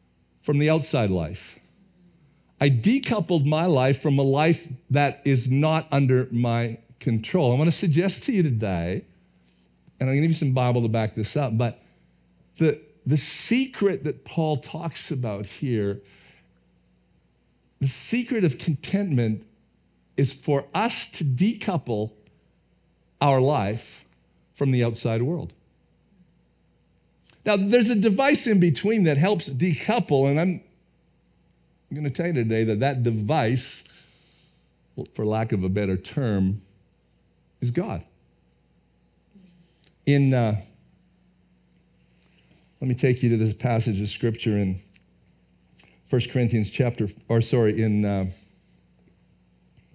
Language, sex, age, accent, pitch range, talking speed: English, male, 50-69, American, 100-155 Hz, 130 wpm